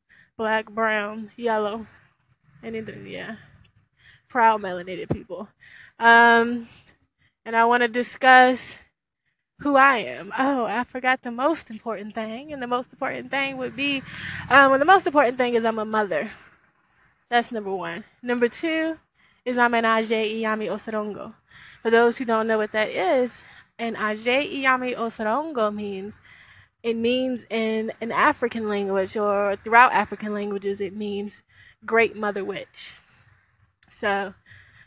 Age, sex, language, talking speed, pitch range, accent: 20-39, female, English, 140 wpm, 215-260 Hz, American